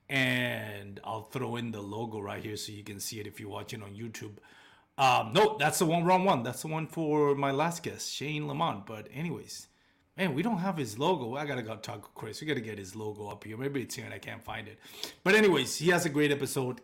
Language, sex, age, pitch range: English, male, 30-49, 110-145 Hz